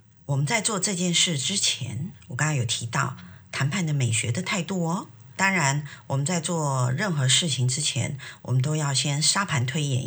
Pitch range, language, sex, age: 125-165 Hz, Chinese, female, 50-69